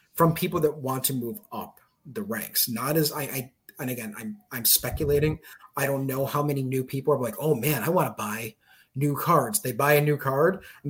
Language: English